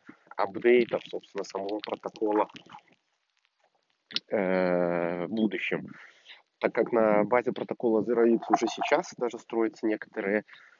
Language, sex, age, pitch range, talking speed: Russian, male, 20-39, 95-110 Hz, 100 wpm